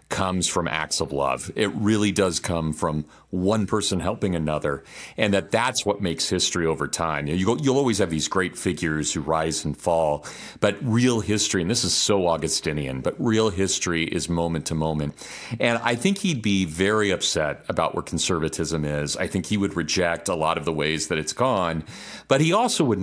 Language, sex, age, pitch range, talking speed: English, male, 40-59, 80-110 Hz, 205 wpm